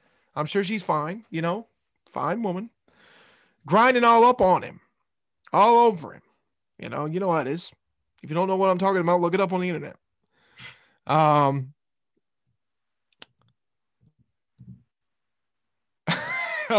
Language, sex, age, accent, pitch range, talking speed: English, male, 20-39, American, 145-180 Hz, 140 wpm